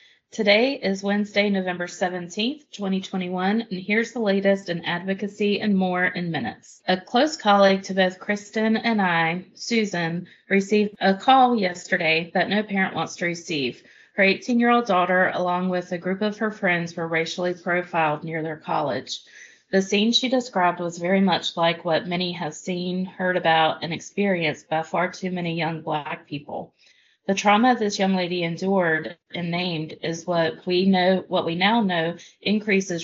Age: 30-49